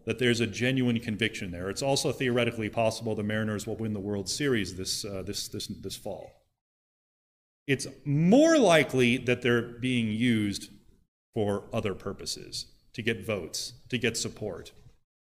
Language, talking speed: English, 155 wpm